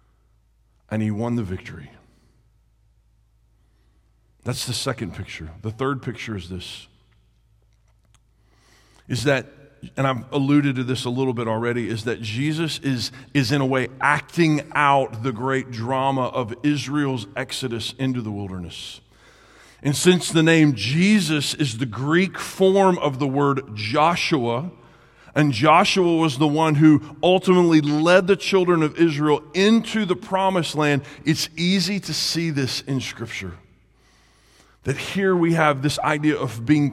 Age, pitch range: 40-59, 120-160 Hz